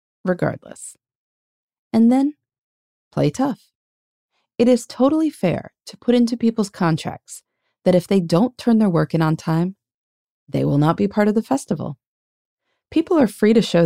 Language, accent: English, American